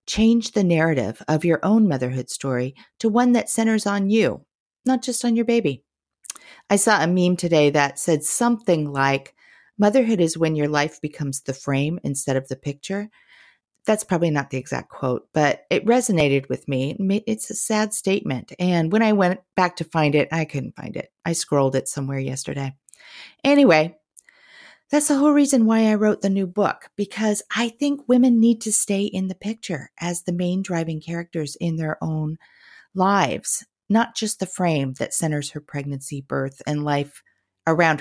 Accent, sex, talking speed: American, female, 180 wpm